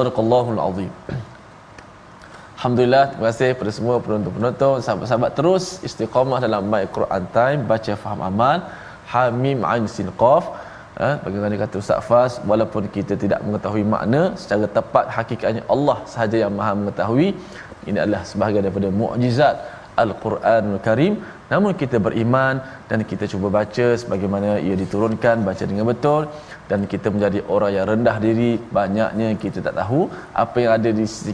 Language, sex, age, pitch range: Malayalam, male, 20-39, 105-125 Hz